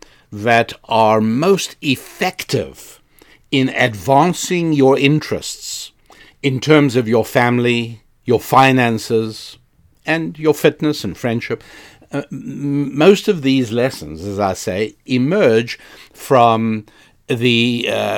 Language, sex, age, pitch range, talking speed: English, male, 60-79, 115-145 Hz, 100 wpm